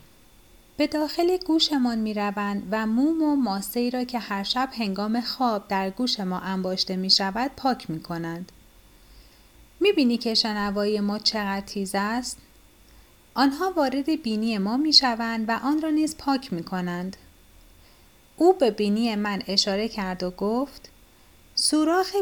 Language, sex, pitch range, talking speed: Persian, female, 195-280 Hz, 140 wpm